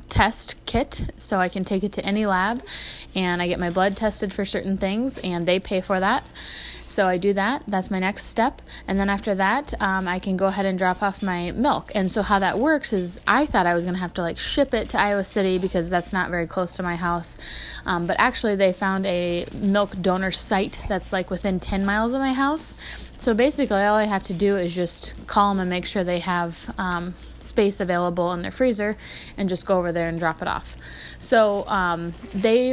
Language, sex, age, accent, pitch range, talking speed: English, female, 20-39, American, 180-210 Hz, 230 wpm